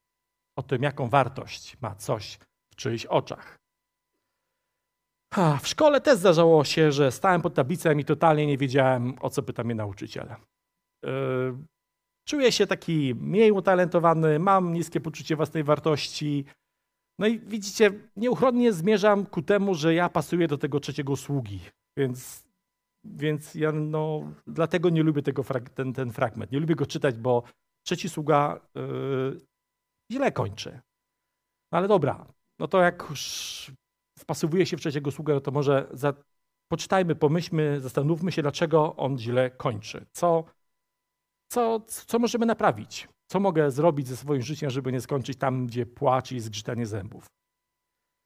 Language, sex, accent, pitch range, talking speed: Polish, male, native, 135-175 Hz, 140 wpm